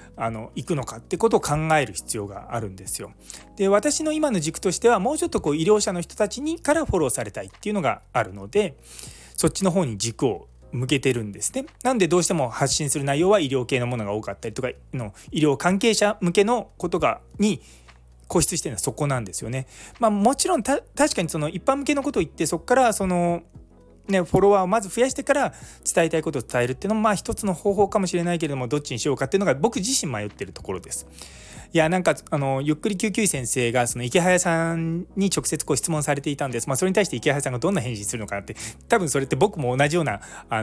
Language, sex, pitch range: Japanese, male, 120-200 Hz